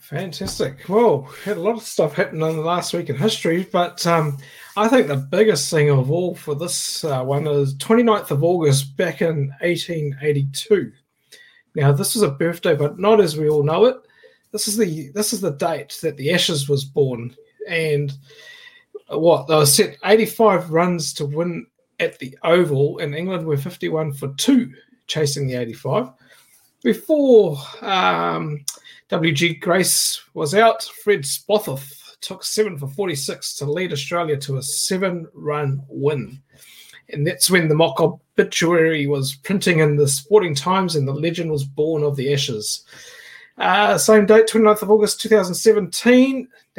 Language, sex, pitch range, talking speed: English, male, 145-210 Hz, 160 wpm